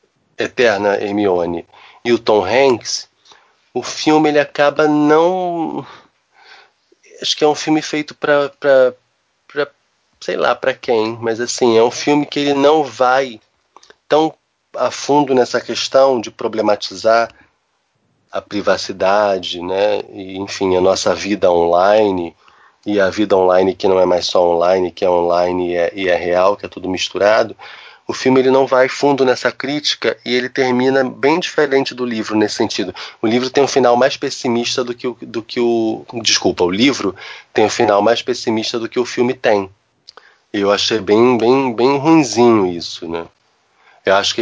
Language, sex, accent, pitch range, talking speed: Portuguese, male, Brazilian, 95-130 Hz, 165 wpm